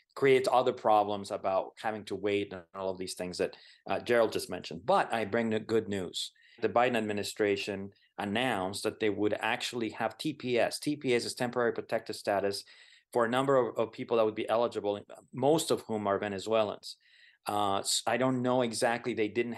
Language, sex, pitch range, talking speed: English, male, 105-130 Hz, 185 wpm